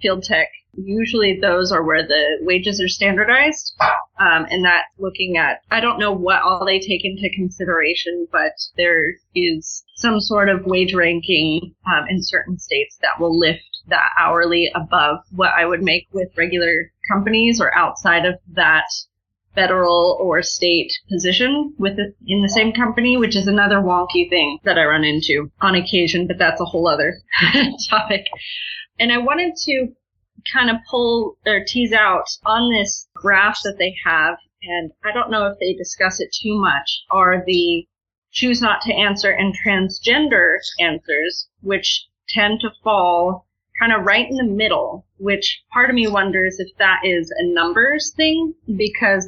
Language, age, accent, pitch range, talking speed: English, 20-39, American, 175-215 Hz, 165 wpm